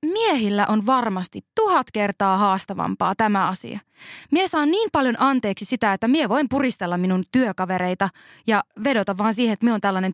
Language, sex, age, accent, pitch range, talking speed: Finnish, female, 20-39, native, 195-250 Hz, 165 wpm